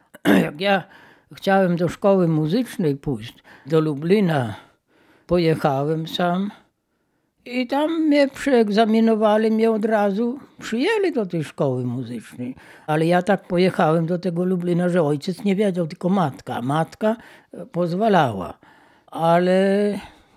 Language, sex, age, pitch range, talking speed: Polish, female, 60-79, 165-225 Hz, 115 wpm